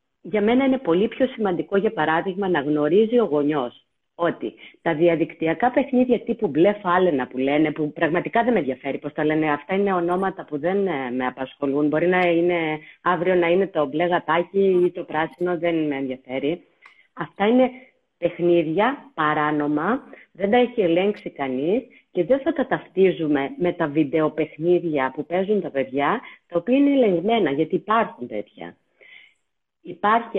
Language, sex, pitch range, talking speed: Greek, female, 150-210 Hz, 150 wpm